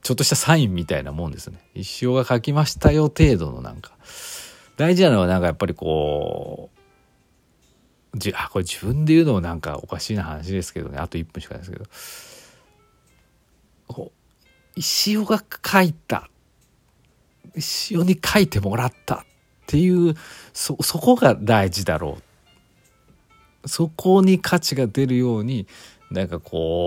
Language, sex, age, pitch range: Japanese, male, 40-59, 85-130 Hz